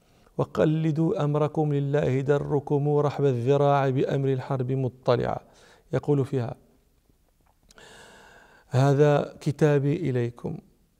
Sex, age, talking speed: male, 40-59, 75 wpm